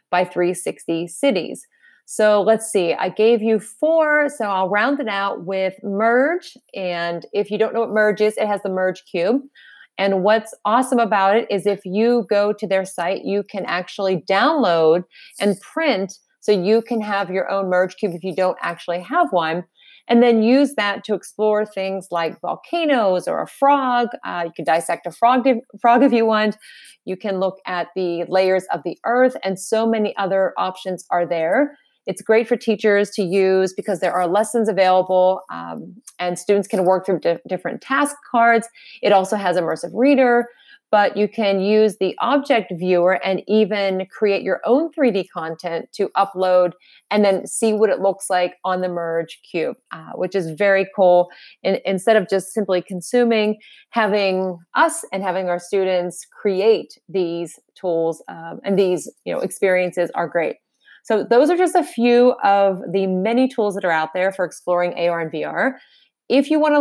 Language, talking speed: English, 180 wpm